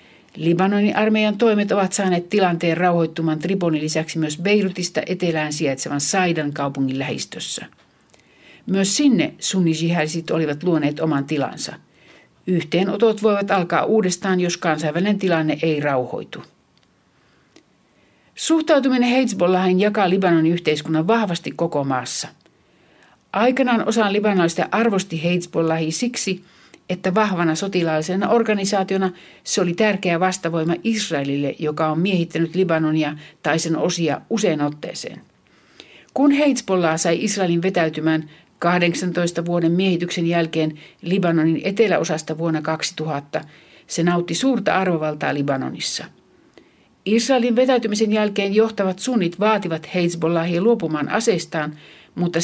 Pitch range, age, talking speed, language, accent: 160-200 Hz, 60-79, 105 wpm, Finnish, native